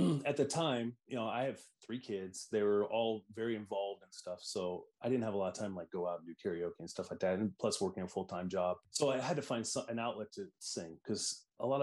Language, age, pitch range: English, 30-49, 90-115 Hz